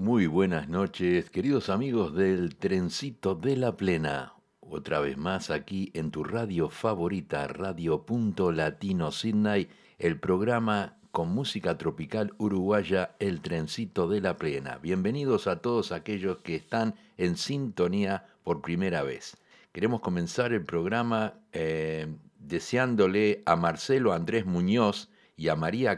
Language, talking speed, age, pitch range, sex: Spanish, 130 wpm, 60-79, 85-115 Hz, male